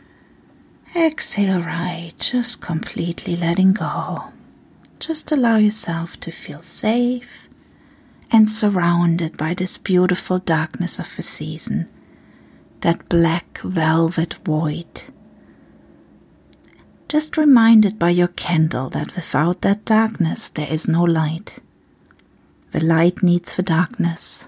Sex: female